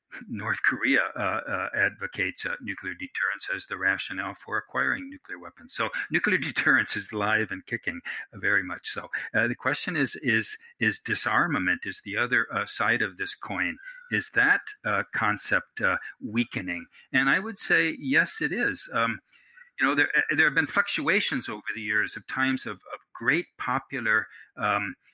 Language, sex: English, male